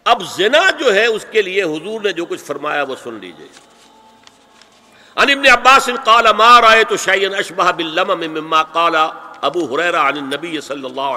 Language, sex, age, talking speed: Urdu, male, 60-79, 175 wpm